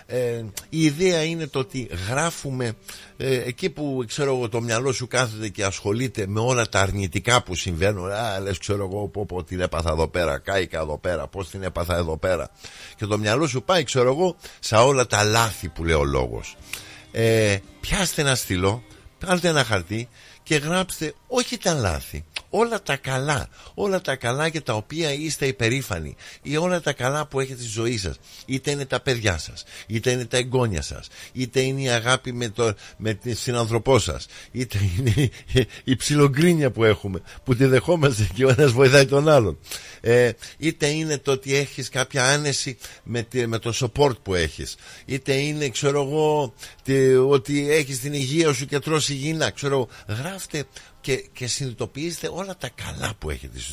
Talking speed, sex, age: 175 wpm, male, 50-69